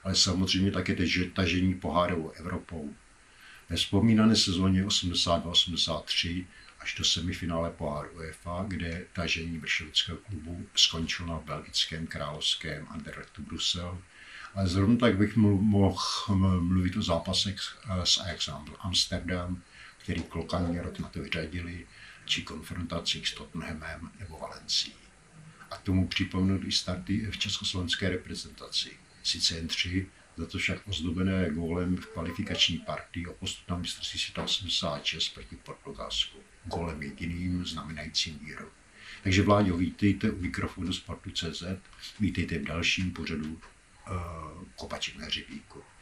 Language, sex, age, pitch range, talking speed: Czech, male, 60-79, 85-95 Hz, 115 wpm